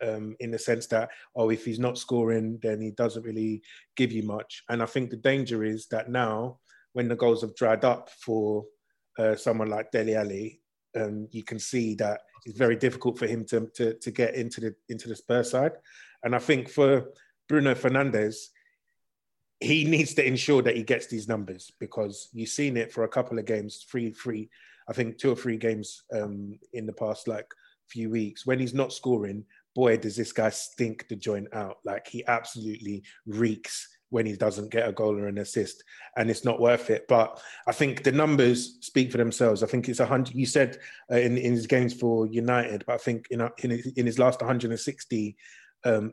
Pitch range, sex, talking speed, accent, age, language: 110-125 Hz, male, 205 wpm, British, 20-39, English